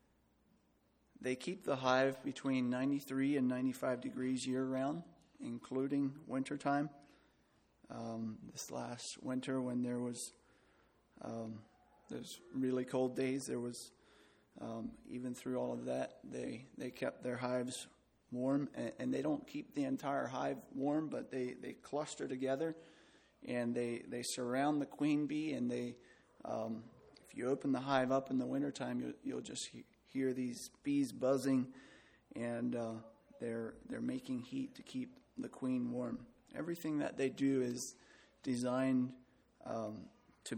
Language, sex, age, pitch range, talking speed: English, male, 30-49, 125-140 Hz, 145 wpm